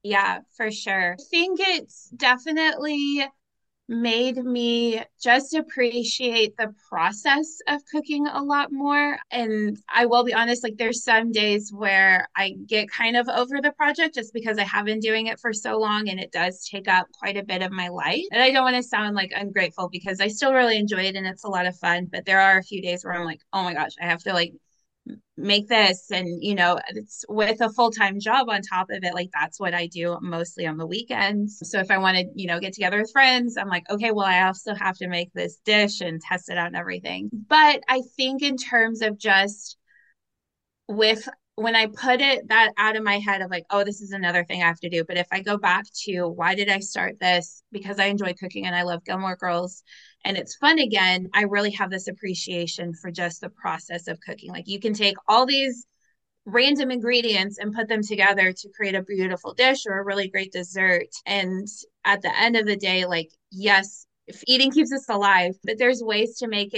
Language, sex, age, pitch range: English, female, 20-39, 185-240 Hz